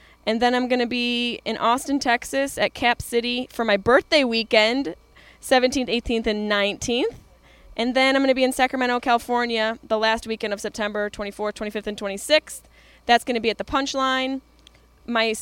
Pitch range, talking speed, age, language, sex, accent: 210-260 Hz, 180 wpm, 10-29, English, female, American